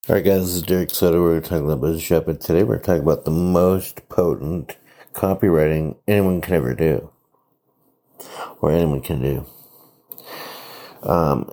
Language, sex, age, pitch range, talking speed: English, male, 60-79, 80-90 Hz, 155 wpm